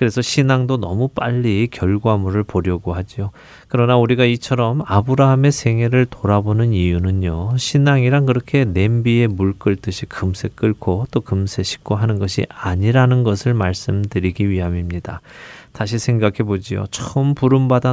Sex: male